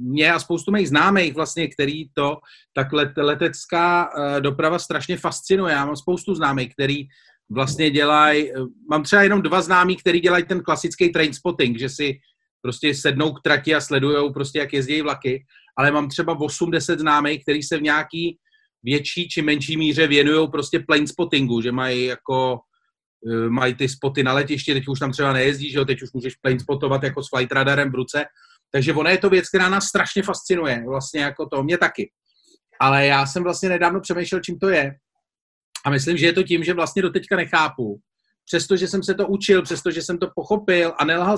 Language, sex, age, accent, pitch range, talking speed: Czech, male, 40-59, native, 145-180 Hz, 185 wpm